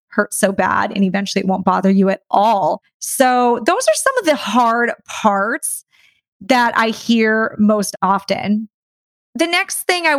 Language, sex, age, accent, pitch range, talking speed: English, female, 30-49, American, 200-240 Hz, 165 wpm